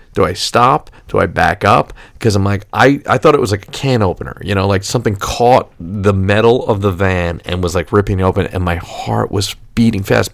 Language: English